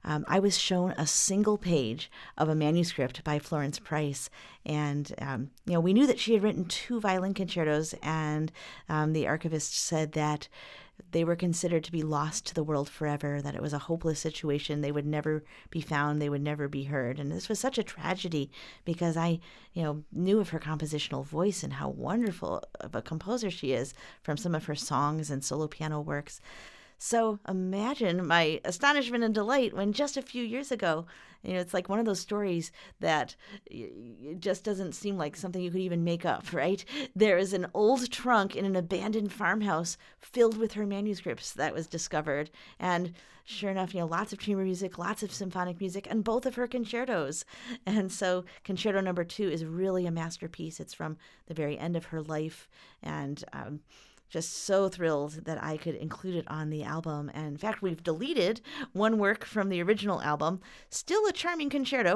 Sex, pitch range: female, 155-205 Hz